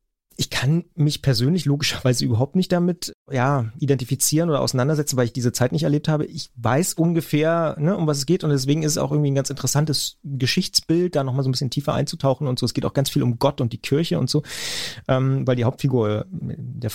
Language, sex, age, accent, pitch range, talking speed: German, male, 30-49, German, 120-145 Hz, 225 wpm